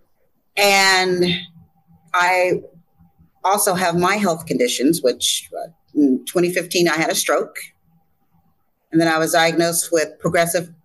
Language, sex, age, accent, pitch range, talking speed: English, female, 40-59, American, 165-240 Hz, 115 wpm